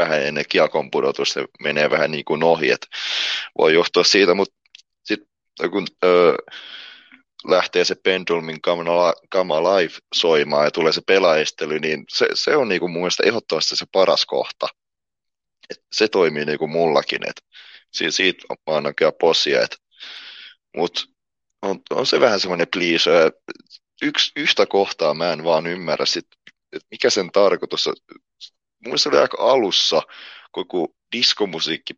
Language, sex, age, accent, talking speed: Finnish, male, 30-49, native, 135 wpm